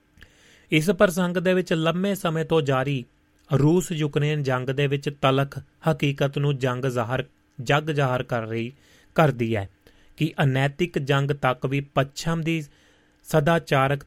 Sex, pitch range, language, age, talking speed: male, 120-155 Hz, Punjabi, 30-49, 130 wpm